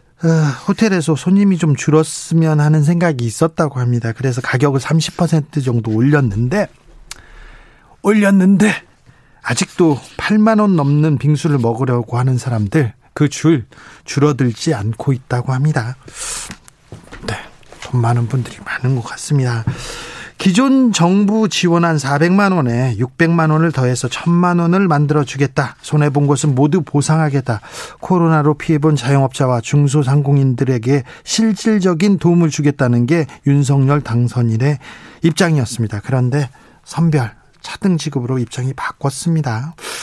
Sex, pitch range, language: male, 130-170 Hz, Korean